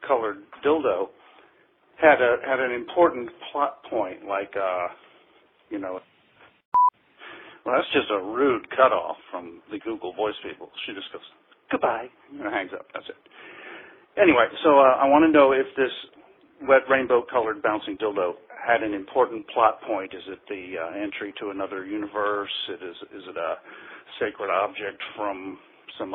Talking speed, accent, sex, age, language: 160 wpm, American, male, 50-69, English